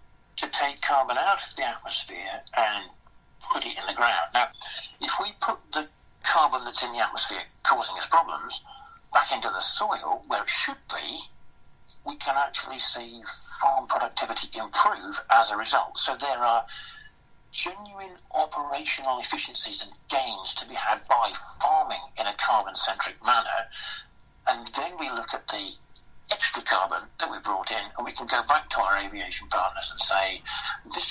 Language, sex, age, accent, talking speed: English, male, 50-69, British, 165 wpm